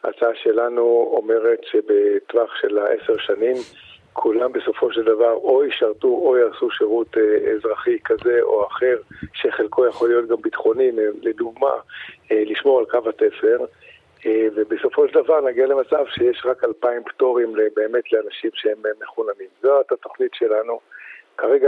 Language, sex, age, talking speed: Hebrew, male, 50-69, 130 wpm